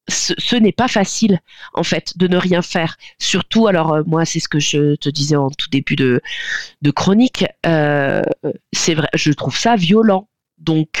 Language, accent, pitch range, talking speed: French, French, 150-195 Hz, 180 wpm